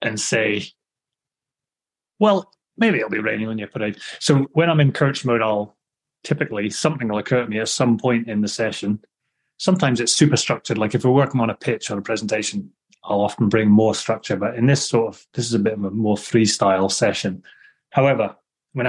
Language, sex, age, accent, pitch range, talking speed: English, male, 30-49, British, 115-145 Hz, 205 wpm